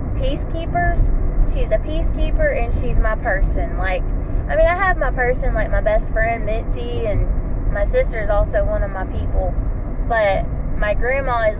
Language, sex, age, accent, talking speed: English, female, 20-39, American, 170 wpm